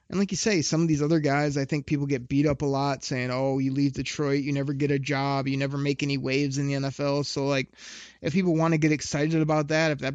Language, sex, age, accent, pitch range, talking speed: English, male, 20-39, American, 135-160 Hz, 280 wpm